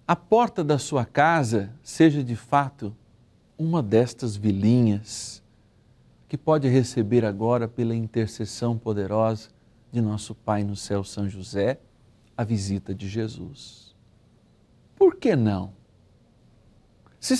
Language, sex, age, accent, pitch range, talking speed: Portuguese, male, 60-79, Brazilian, 110-140 Hz, 115 wpm